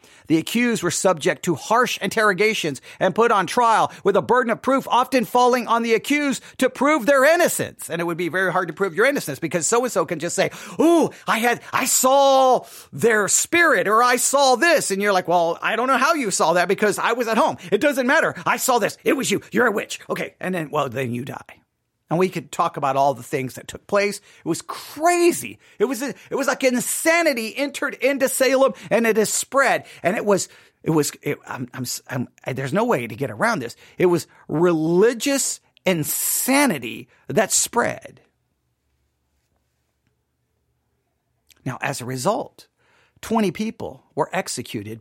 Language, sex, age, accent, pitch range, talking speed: English, male, 40-59, American, 160-250 Hz, 190 wpm